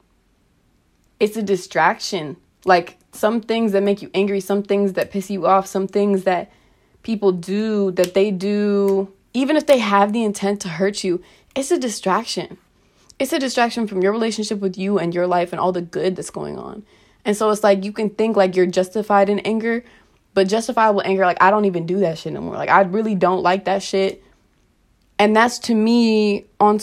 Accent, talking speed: American, 200 wpm